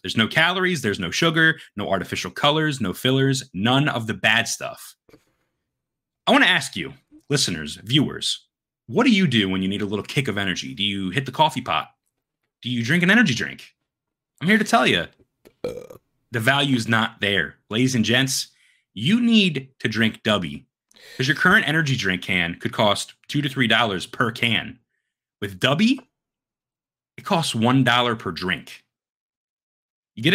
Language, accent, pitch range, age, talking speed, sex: English, American, 110-160 Hz, 30-49, 170 wpm, male